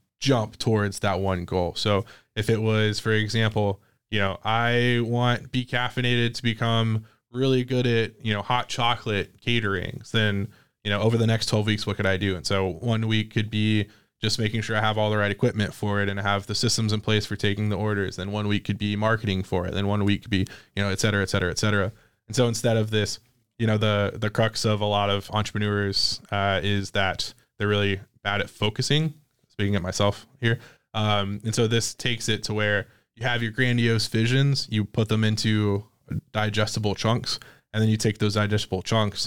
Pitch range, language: 105-120 Hz, English